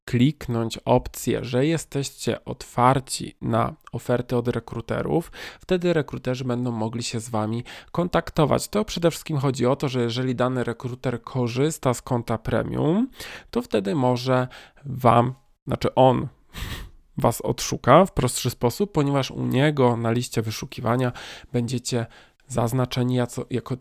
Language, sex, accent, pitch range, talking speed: Polish, male, native, 120-140 Hz, 130 wpm